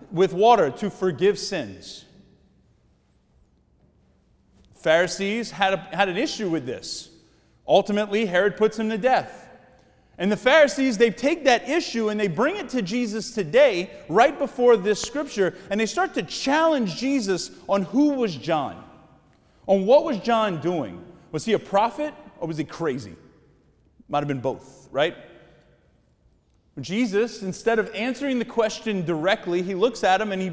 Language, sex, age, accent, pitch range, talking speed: English, male, 30-49, American, 170-240 Hz, 155 wpm